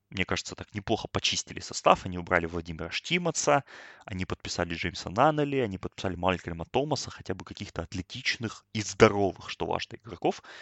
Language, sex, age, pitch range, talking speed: Russian, male, 20-39, 90-110 Hz, 155 wpm